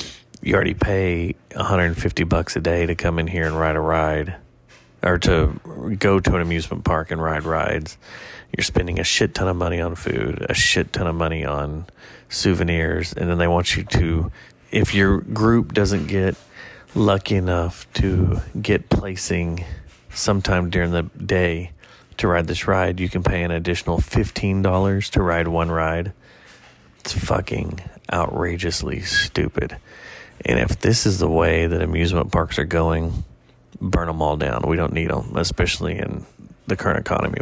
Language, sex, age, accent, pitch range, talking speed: English, male, 30-49, American, 85-95 Hz, 165 wpm